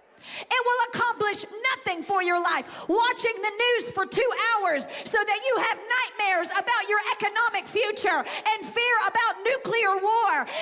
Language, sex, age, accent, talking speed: English, female, 40-59, American, 155 wpm